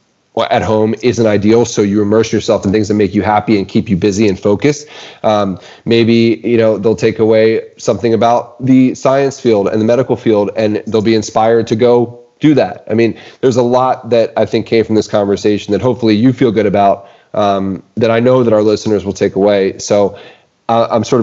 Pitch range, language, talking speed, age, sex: 105-120 Hz, English, 215 wpm, 30-49, male